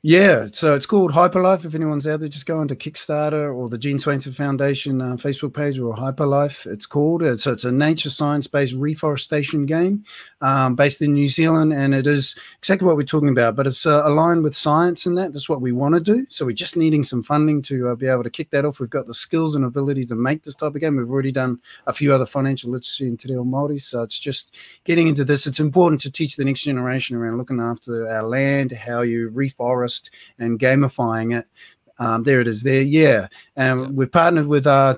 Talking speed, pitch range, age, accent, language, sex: 235 wpm, 125-150 Hz, 30-49, Australian, English, male